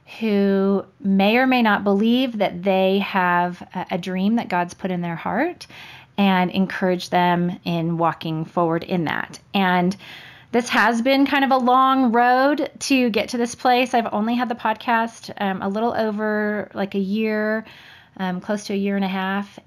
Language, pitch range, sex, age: English, 180-225 Hz, female, 20-39